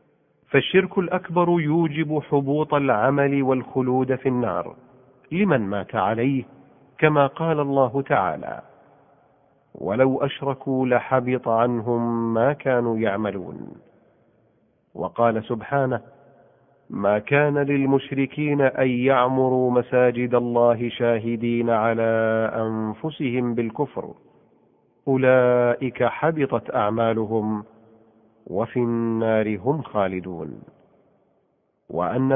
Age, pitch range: 40-59, 115-140 Hz